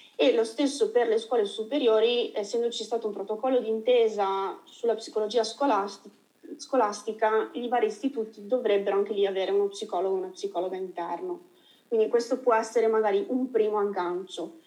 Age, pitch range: 30-49, 205-245 Hz